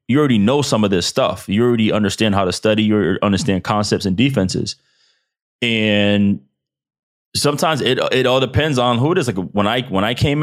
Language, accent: English, American